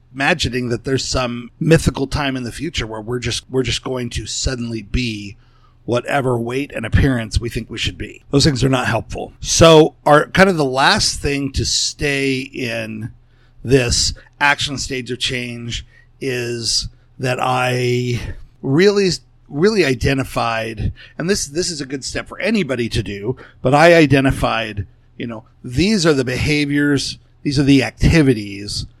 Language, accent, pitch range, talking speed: English, American, 115-140 Hz, 160 wpm